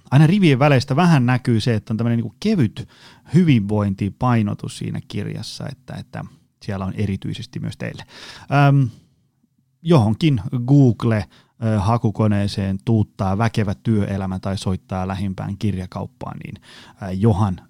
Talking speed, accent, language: 110 wpm, native, Finnish